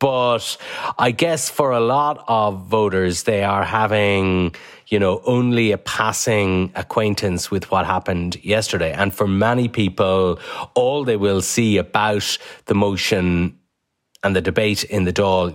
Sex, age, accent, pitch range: male, 30-49, Irish, 95-125 Hz